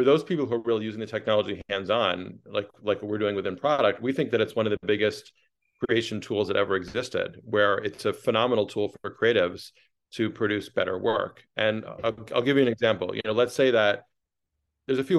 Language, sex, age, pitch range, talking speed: English, male, 40-59, 105-120 Hz, 215 wpm